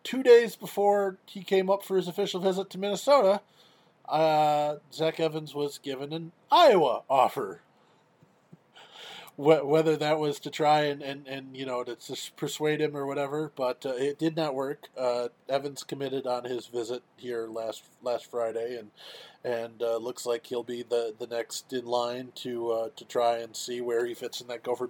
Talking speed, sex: 185 wpm, male